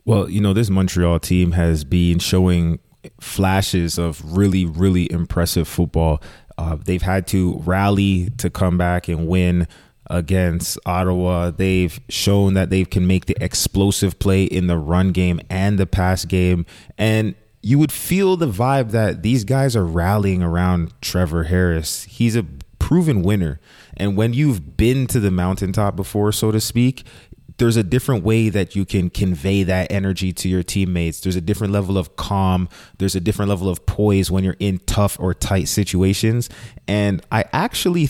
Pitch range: 90-115 Hz